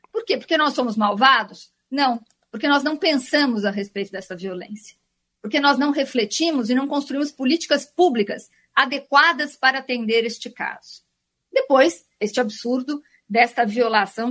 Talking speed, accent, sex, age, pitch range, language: 145 wpm, Brazilian, female, 50-69, 220-290 Hz, Portuguese